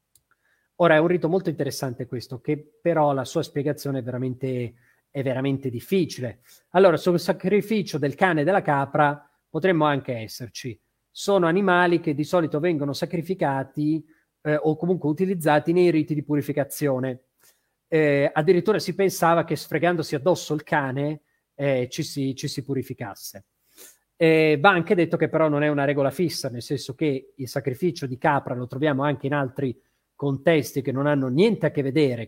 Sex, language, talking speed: male, Italian, 160 wpm